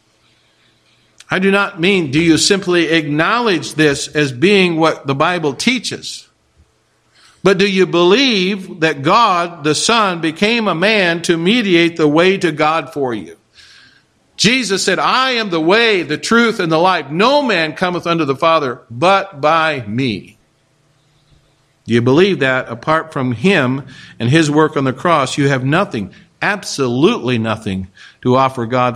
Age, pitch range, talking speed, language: 50-69, 125-180 Hz, 155 wpm, English